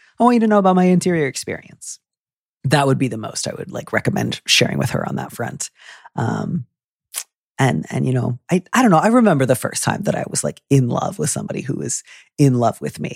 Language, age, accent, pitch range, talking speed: English, 30-49, American, 120-140 Hz, 235 wpm